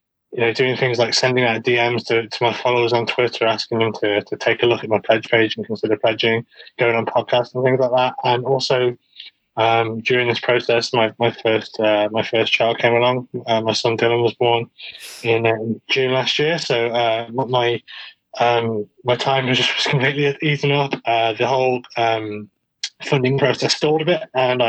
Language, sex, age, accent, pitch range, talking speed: English, male, 20-39, British, 115-135 Hz, 200 wpm